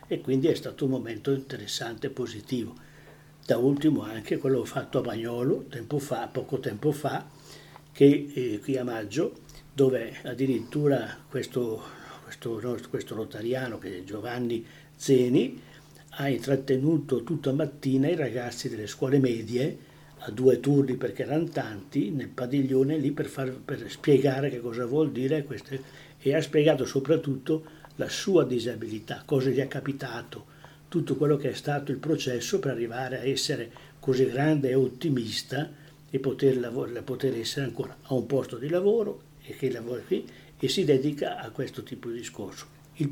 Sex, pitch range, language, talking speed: male, 125-150 Hz, Italian, 160 wpm